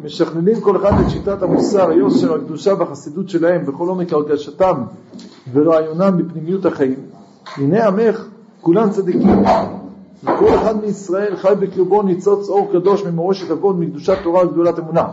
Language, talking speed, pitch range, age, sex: Hebrew, 135 wpm, 170-205 Hz, 50-69, male